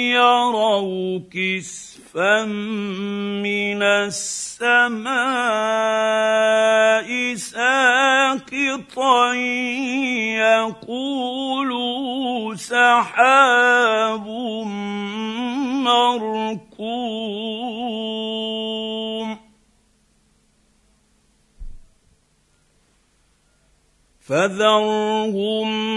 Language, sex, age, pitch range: Arabic, male, 50-69, 215-245 Hz